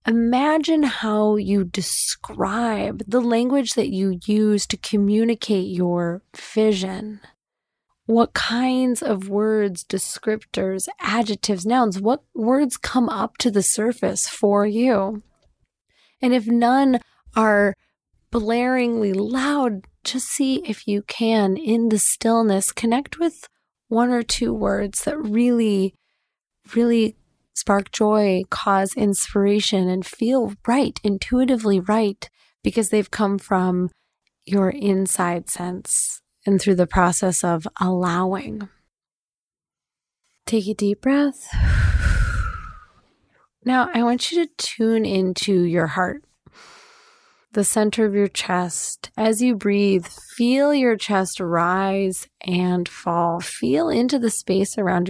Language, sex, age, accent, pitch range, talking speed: English, female, 30-49, American, 195-240 Hz, 115 wpm